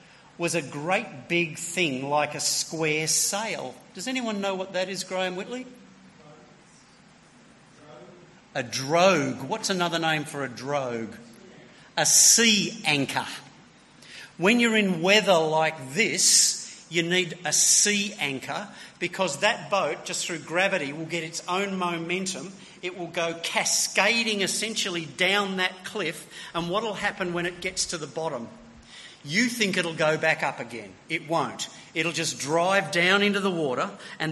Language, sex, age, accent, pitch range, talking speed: English, male, 50-69, Australian, 145-190 Hz, 150 wpm